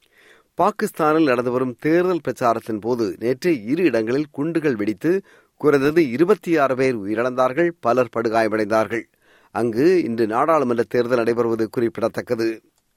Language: Tamil